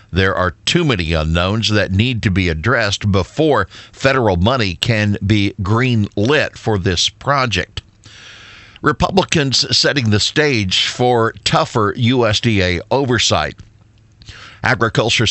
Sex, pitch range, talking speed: male, 95-115 Hz, 115 wpm